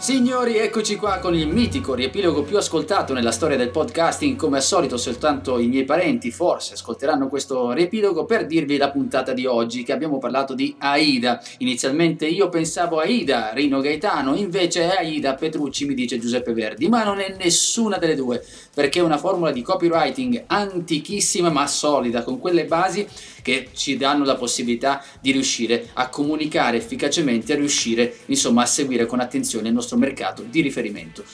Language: Italian